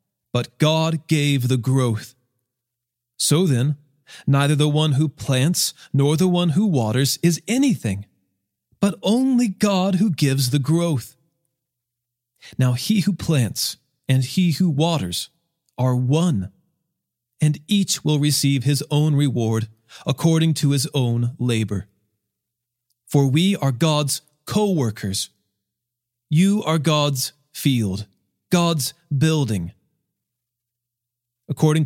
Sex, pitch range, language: male, 125-170 Hz, English